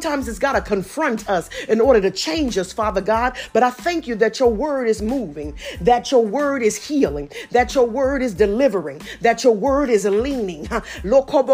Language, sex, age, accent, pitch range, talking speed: English, female, 40-59, American, 210-275 Hz, 190 wpm